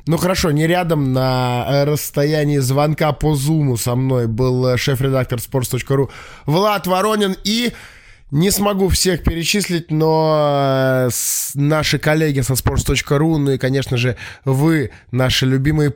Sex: male